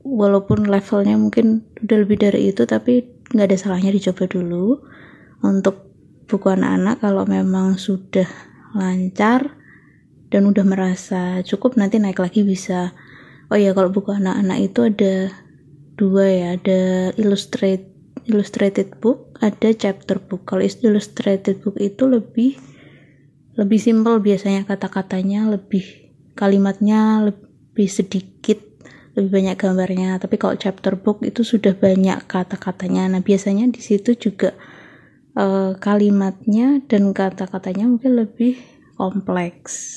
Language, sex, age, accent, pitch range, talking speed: Indonesian, female, 20-39, native, 190-220 Hz, 115 wpm